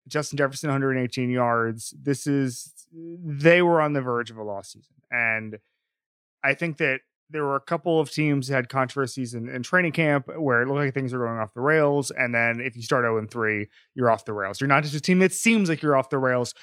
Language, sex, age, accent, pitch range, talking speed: English, male, 30-49, American, 115-145 Hz, 230 wpm